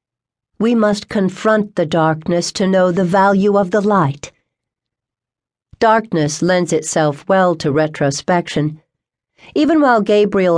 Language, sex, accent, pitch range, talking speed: English, female, American, 150-205 Hz, 120 wpm